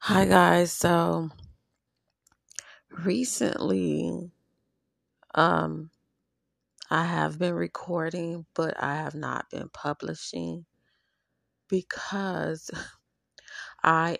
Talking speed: 70 wpm